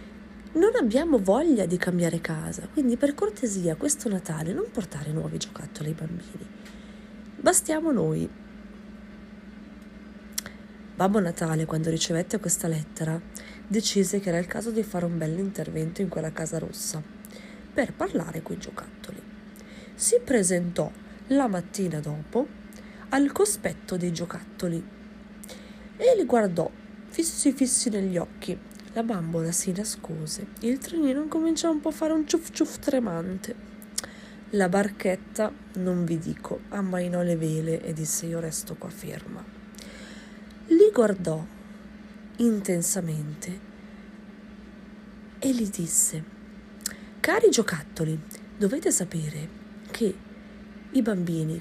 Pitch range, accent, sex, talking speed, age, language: 175-215 Hz, native, female, 120 wpm, 30-49, Italian